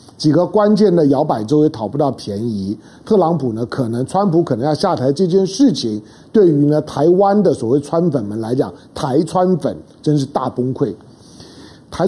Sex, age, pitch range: male, 50-69, 140-205 Hz